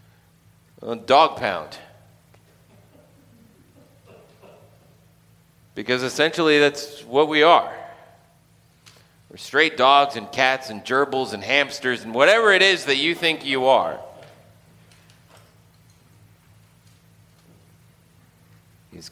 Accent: American